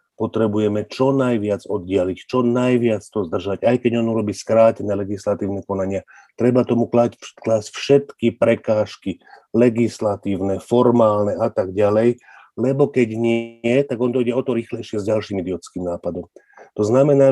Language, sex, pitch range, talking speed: Slovak, male, 100-120 Hz, 140 wpm